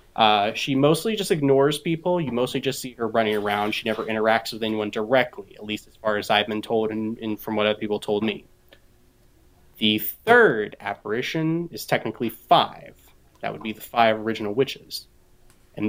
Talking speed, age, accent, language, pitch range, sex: 185 wpm, 20-39, American, English, 110-140 Hz, male